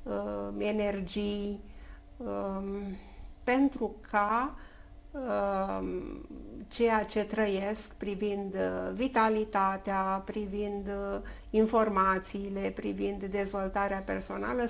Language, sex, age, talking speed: Romanian, female, 50-69, 55 wpm